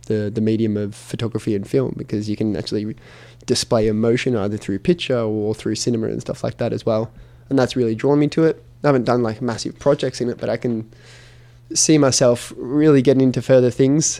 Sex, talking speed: male, 210 wpm